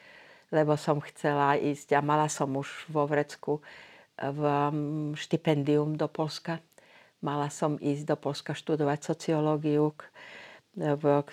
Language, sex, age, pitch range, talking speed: Slovak, female, 50-69, 140-155 Hz, 115 wpm